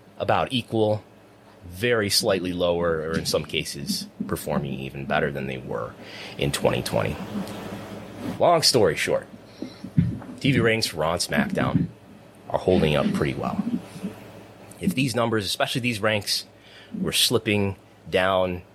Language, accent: English, American